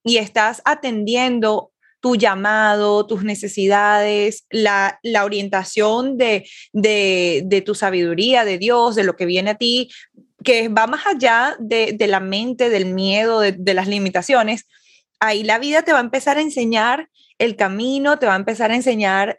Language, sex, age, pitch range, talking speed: Spanish, female, 20-39, 205-255 Hz, 165 wpm